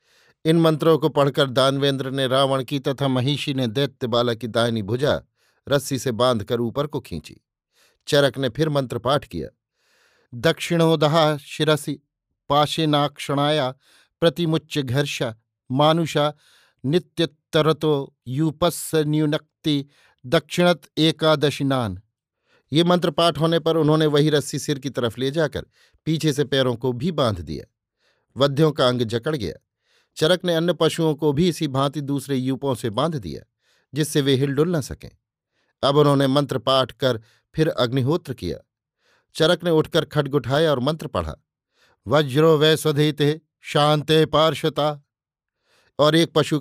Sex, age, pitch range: male, 50-69, 130-155 Hz